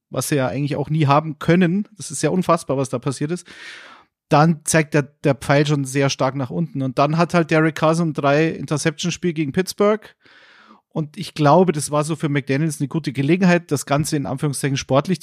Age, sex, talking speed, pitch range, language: 40-59, male, 215 wpm, 145-175 Hz, German